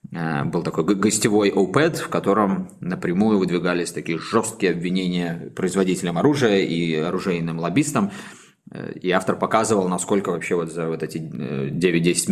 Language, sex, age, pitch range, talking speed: Russian, male, 20-39, 80-95 Hz, 125 wpm